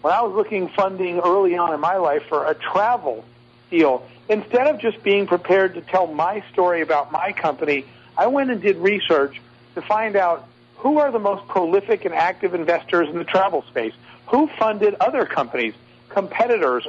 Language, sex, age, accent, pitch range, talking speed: English, male, 50-69, American, 155-210 Hz, 180 wpm